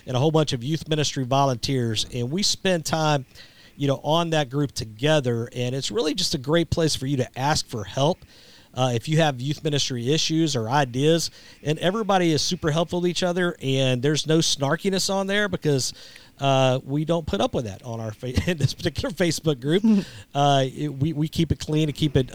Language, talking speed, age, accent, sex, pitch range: English, 215 wpm, 50-69, American, male, 125-160 Hz